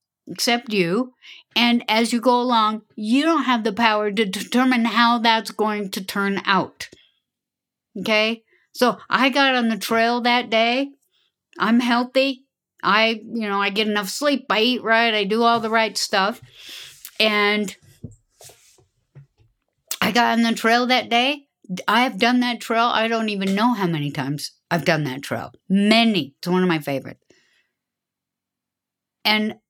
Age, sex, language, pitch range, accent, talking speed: 60-79, female, English, 200-240 Hz, American, 160 wpm